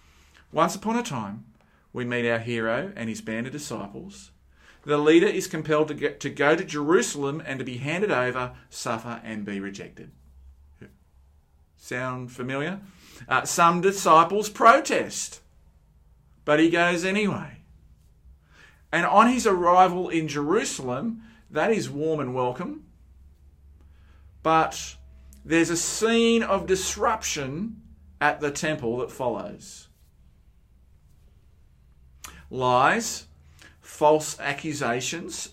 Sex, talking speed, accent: male, 115 wpm, Australian